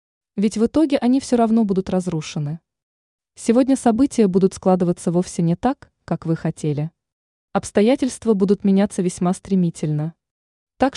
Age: 20-39